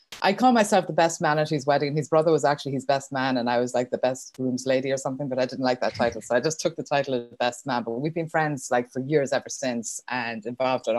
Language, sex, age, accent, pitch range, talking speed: English, female, 20-39, Irish, 125-150 Hz, 295 wpm